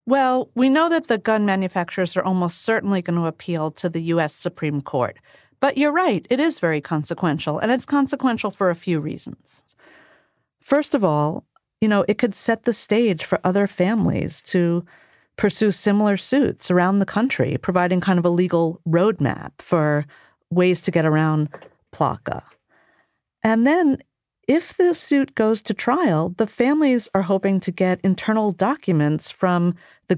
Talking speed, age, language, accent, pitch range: 165 wpm, 40-59, English, American, 170-225 Hz